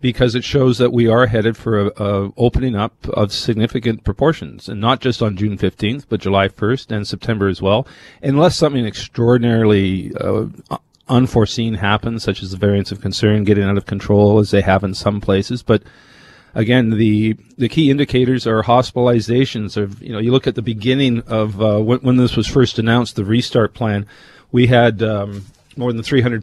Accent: American